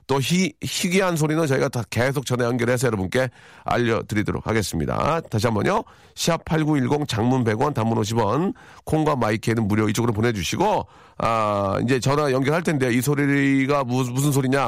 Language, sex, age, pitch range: Korean, male, 40-59, 115-170 Hz